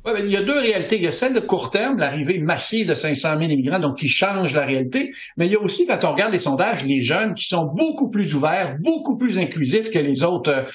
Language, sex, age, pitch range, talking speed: French, male, 60-79, 150-220 Hz, 270 wpm